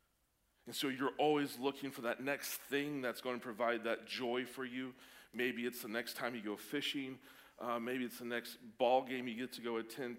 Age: 40-59